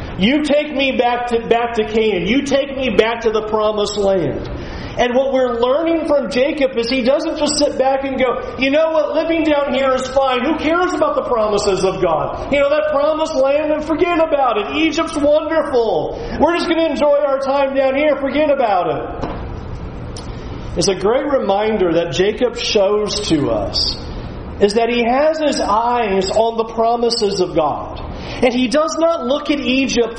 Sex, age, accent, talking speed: male, 40-59, American, 190 wpm